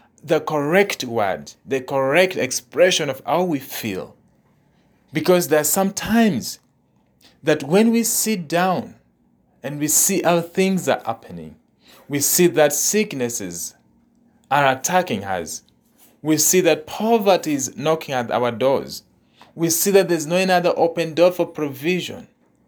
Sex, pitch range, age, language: male, 145-185 Hz, 40-59, English